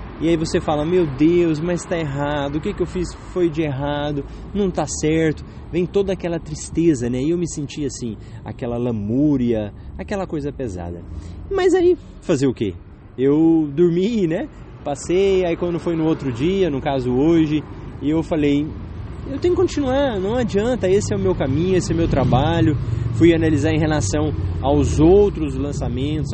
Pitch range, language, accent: 120-170 Hz, English, Brazilian